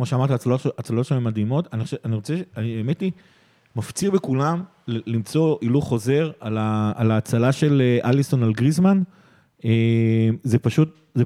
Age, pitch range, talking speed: 30-49, 125-160 Hz, 110 wpm